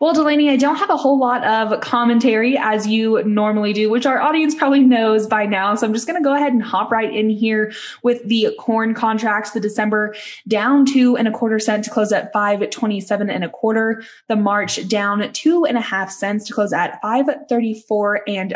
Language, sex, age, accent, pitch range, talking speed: English, female, 10-29, American, 210-240 Hz, 215 wpm